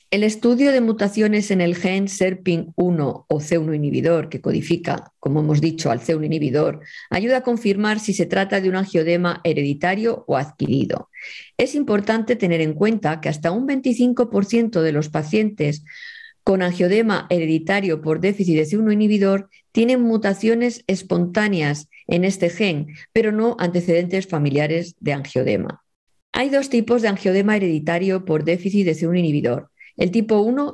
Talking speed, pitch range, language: 150 wpm, 160-215 Hz, English